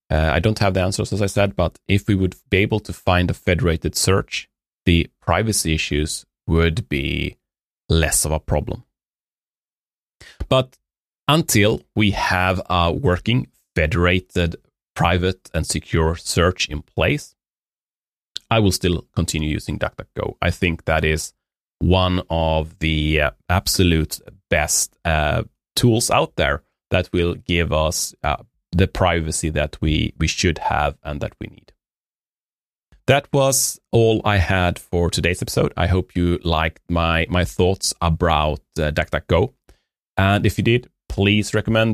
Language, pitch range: English, 80-105 Hz